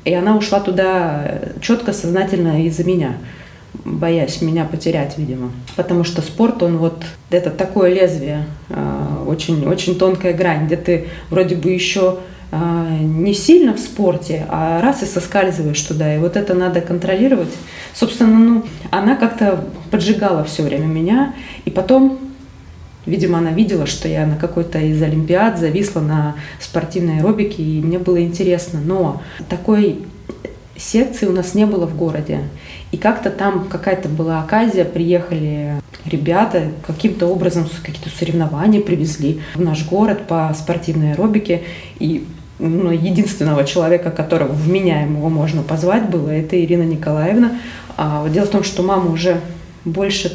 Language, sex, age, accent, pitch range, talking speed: Russian, female, 20-39, native, 160-190 Hz, 140 wpm